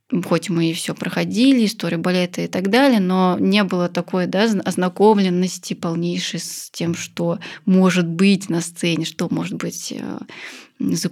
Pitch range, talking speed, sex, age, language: 180-200 Hz, 150 wpm, female, 20-39, Russian